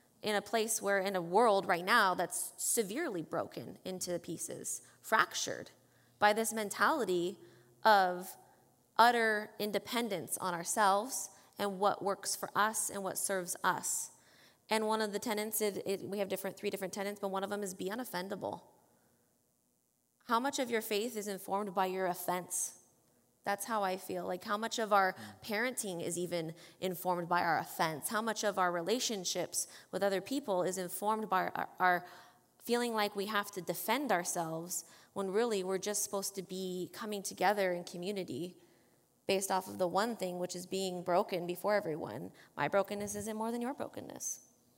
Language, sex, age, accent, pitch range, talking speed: English, female, 20-39, American, 180-215 Hz, 165 wpm